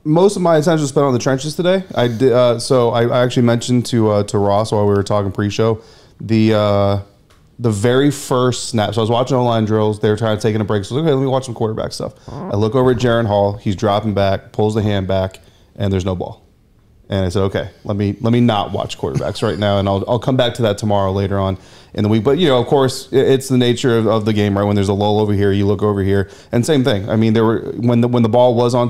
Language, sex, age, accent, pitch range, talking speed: English, male, 30-49, American, 100-120 Hz, 285 wpm